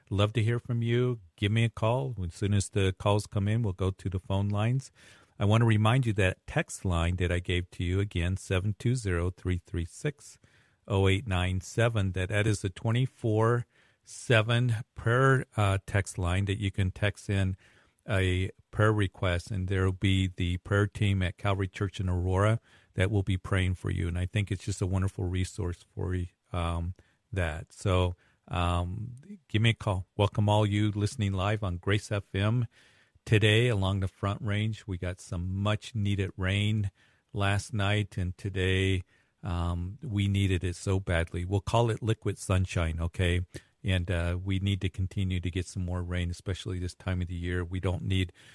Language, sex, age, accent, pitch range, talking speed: English, male, 50-69, American, 90-105 Hz, 190 wpm